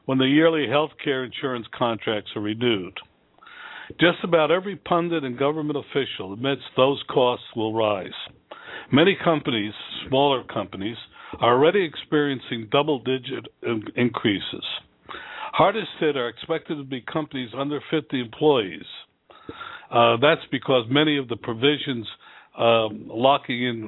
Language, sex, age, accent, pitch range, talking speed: English, male, 60-79, American, 120-150 Hz, 125 wpm